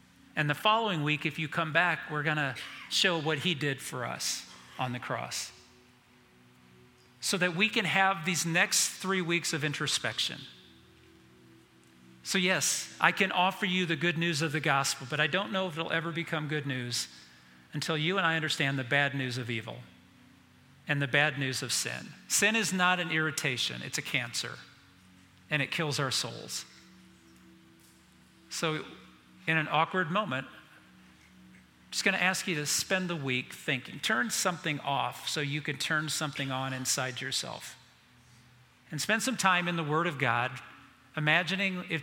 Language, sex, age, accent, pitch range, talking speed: English, male, 40-59, American, 125-165 Hz, 170 wpm